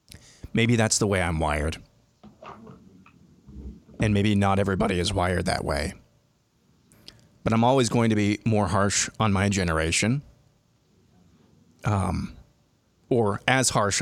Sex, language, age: male, English, 30-49